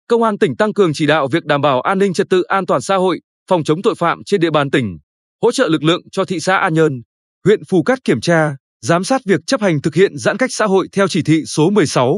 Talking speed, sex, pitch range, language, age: 275 wpm, male, 150-205 Hz, Vietnamese, 20-39